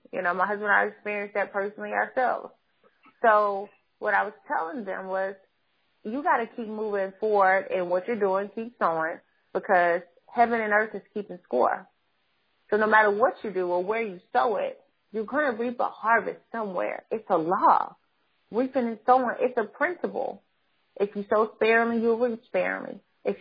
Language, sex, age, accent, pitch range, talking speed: English, female, 30-49, American, 200-245 Hz, 185 wpm